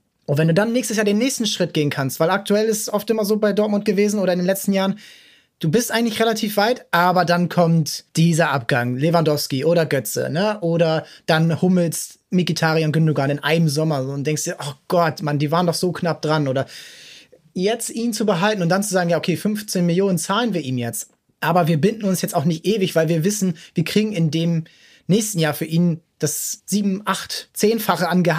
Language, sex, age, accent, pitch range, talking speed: German, male, 20-39, German, 155-190 Hz, 215 wpm